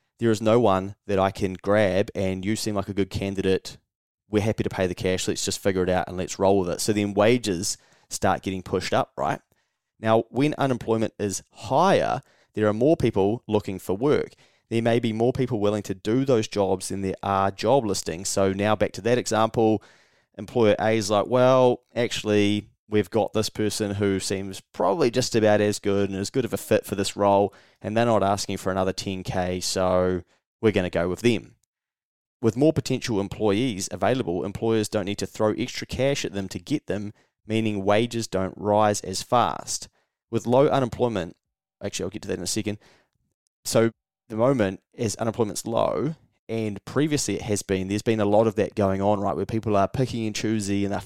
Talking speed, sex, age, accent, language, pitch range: 205 wpm, male, 20-39, Australian, English, 100-115 Hz